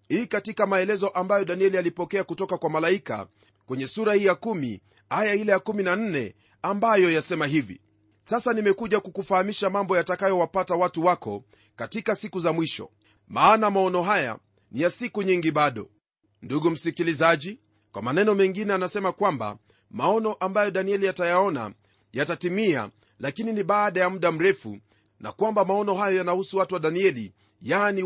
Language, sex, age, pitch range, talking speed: Swahili, male, 40-59, 145-200 Hz, 145 wpm